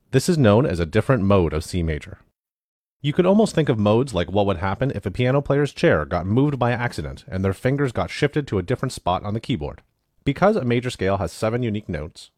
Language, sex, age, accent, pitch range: Chinese, male, 30-49, American, 90-125 Hz